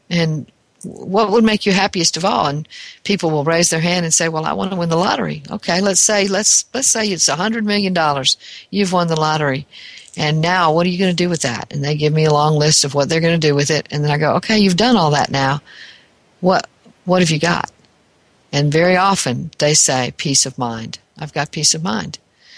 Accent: American